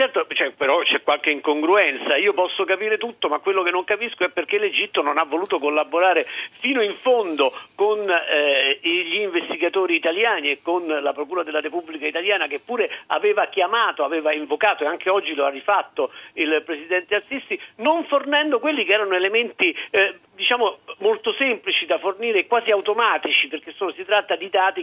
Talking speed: 175 wpm